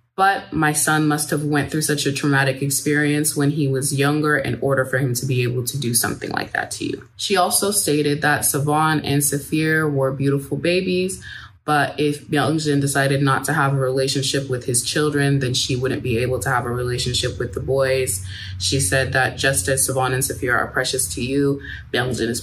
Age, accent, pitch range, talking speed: 20-39, American, 130-150 Hz, 205 wpm